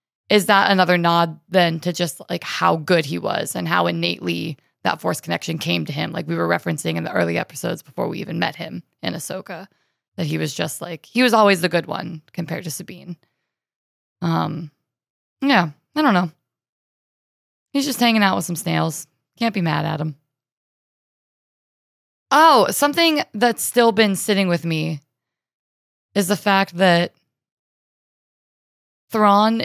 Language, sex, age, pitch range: English, female, 20-39, 170-215 Hz